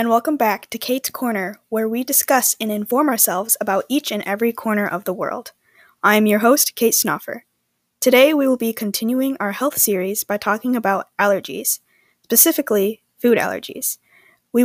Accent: American